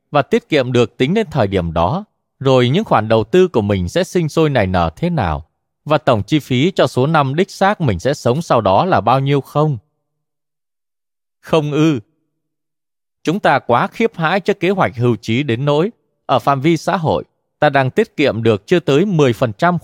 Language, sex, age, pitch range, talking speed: Vietnamese, male, 20-39, 105-155 Hz, 205 wpm